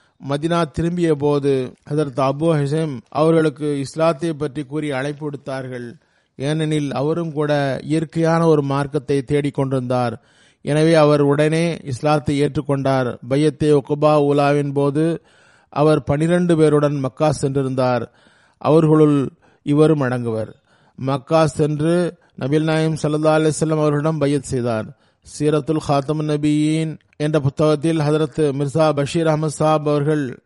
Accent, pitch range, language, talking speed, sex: native, 140-160 Hz, Tamil, 110 wpm, male